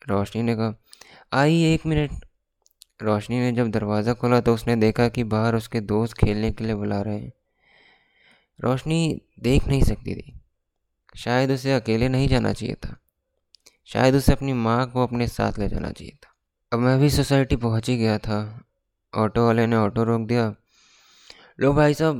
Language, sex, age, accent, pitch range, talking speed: Hindi, male, 20-39, native, 105-125 Hz, 175 wpm